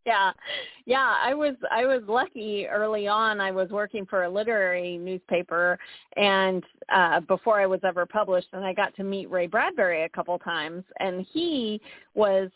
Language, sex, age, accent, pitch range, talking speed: English, female, 40-59, American, 180-225 Hz, 175 wpm